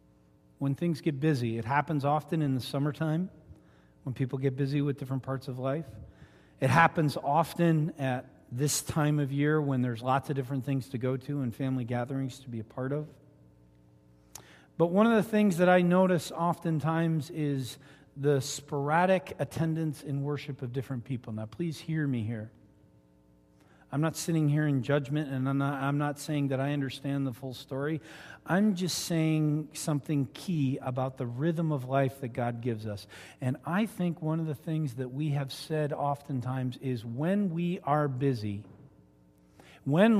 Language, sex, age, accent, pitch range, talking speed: English, male, 40-59, American, 125-160 Hz, 175 wpm